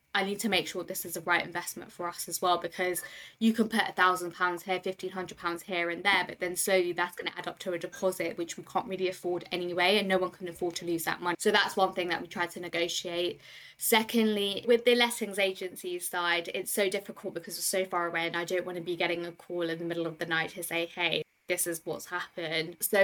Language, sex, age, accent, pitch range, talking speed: English, female, 20-39, British, 175-190 Hz, 255 wpm